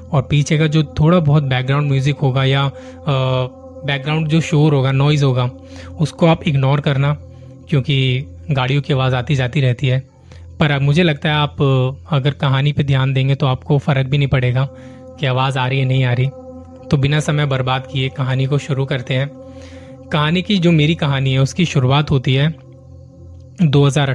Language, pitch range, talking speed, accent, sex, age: Hindi, 125-150 Hz, 180 wpm, native, male, 20-39